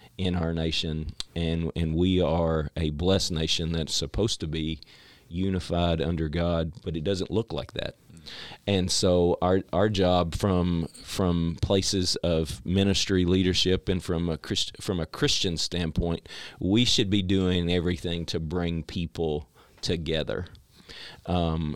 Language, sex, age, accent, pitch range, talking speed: English, male, 40-59, American, 80-95 Hz, 140 wpm